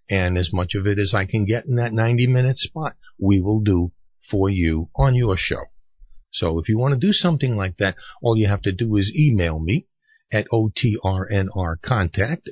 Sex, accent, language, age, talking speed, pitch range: male, American, English, 50-69, 190 wpm, 90-120 Hz